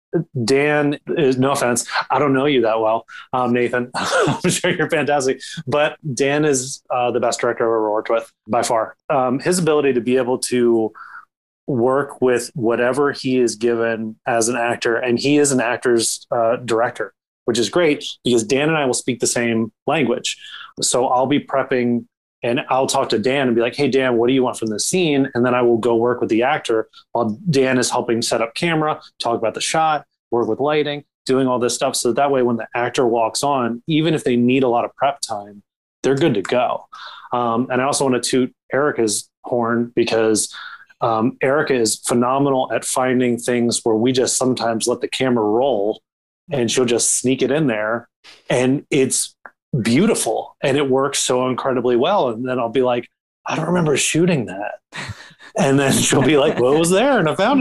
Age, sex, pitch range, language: 30-49, male, 120-145 Hz, English